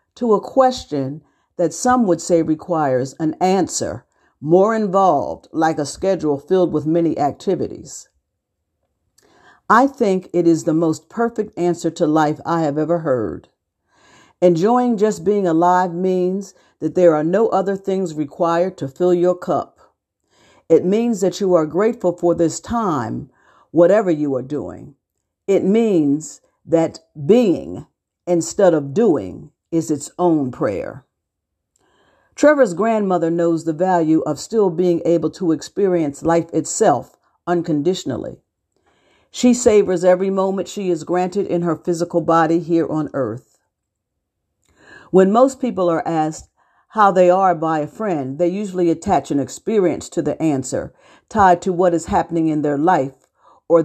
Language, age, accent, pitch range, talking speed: English, 50-69, American, 155-190 Hz, 145 wpm